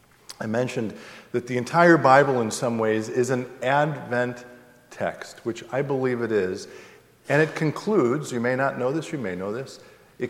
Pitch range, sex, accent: 110-140 Hz, male, American